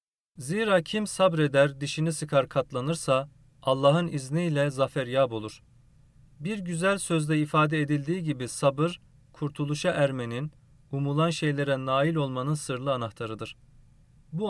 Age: 40-59